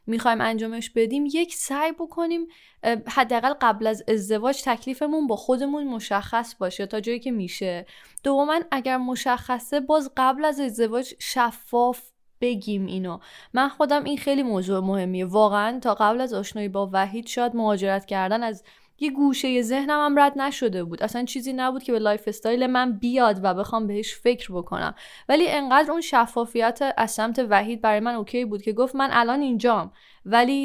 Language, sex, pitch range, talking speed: Persian, female, 215-265 Hz, 170 wpm